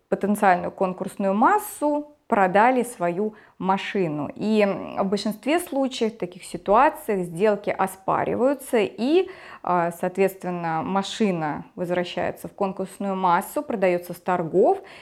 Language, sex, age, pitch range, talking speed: Russian, female, 20-39, 185-265 Hz, 100 wpm